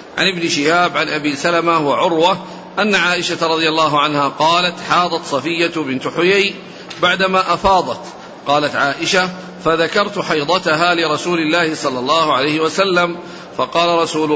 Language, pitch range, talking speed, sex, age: Arabic, 150-180 Hz, 130 wpm, male, 50-69